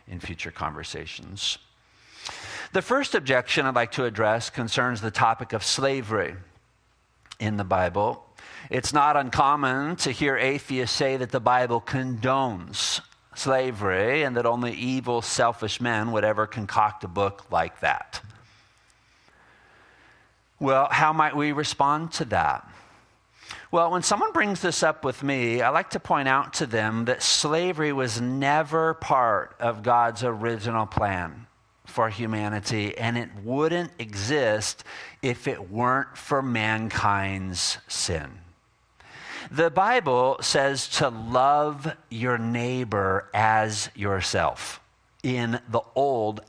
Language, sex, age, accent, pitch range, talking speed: English, male, 50-69, American, 110-135 Hz, 125 wpm